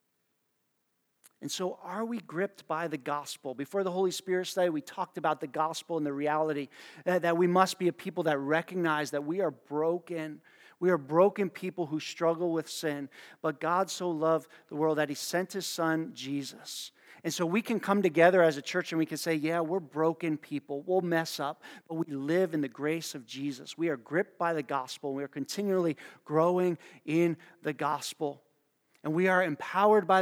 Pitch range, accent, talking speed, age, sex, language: 150-180 Hz, American, 200 wpm, 40-59, male, English